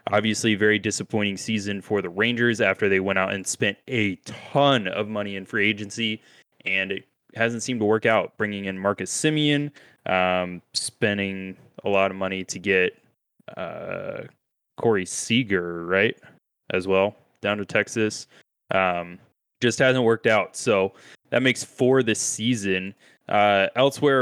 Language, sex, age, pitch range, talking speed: English, male, 20-39, 95-110 Hz, 150 wpm